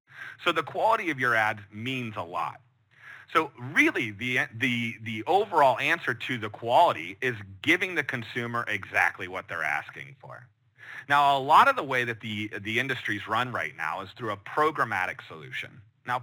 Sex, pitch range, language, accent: male, 105-130 Hz, English, American